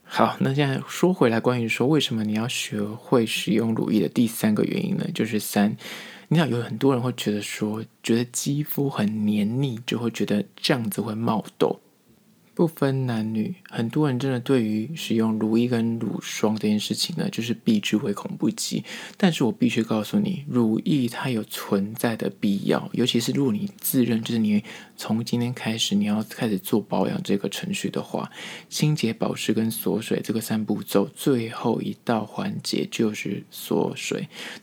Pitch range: 110-155 Hz